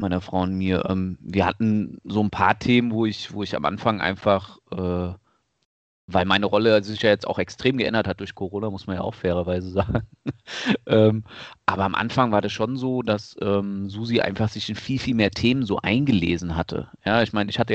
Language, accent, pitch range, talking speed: German, German, 100-120 Hz, 200 wpm